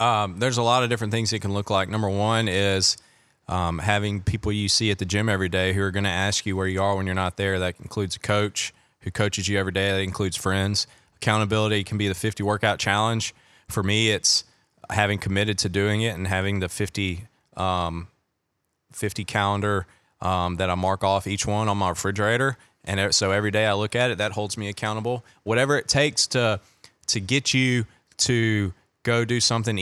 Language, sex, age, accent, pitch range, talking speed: English, male, 20-39, American, 95-110 Hz, 210 wpm